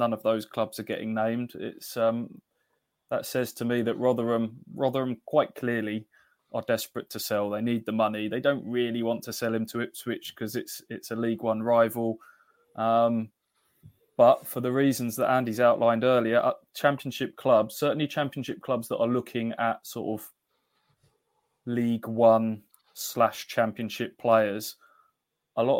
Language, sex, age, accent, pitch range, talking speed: English, male, 20-39, British, 110-125 Hz, 165 wpm